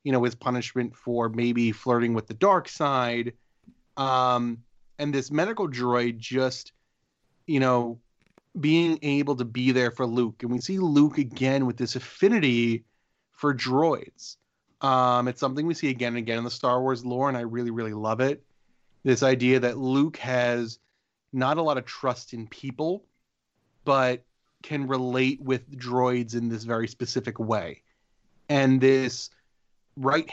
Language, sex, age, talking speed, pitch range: English, male, 30-49, 160 wpm, 120-140 Hz